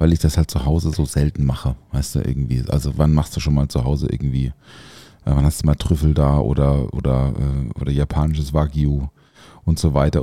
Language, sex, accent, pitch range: German, male, German, 75-95 Hz